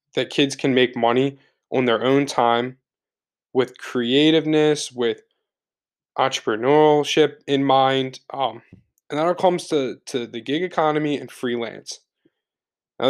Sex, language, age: male, English, 10-29